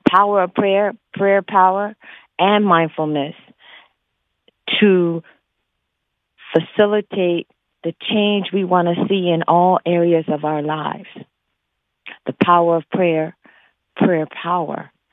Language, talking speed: English, 105 wpm